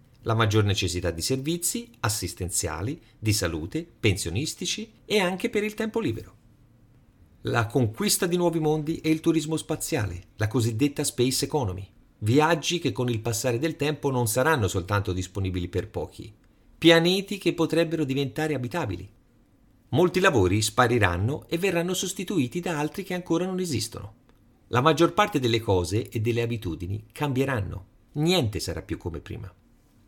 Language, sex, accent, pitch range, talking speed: Italian, male, native, 95-145 Hz, 145 wpm